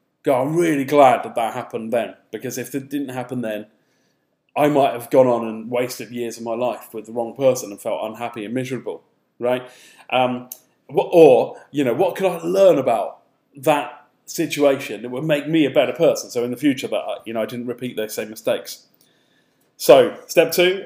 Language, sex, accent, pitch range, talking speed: English, male, British, 125-160 Hz, 200 wpm